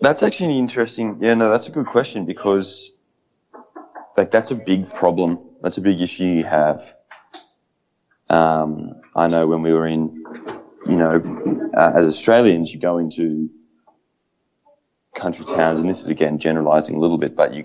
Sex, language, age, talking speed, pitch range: male, Slovak, 20-39, 165 wpm, 80-90 Hz